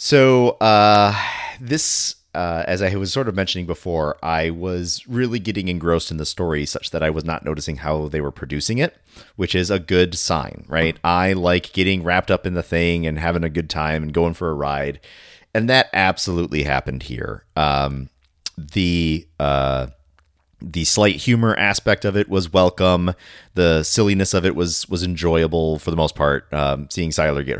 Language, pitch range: English, 80-110 Hz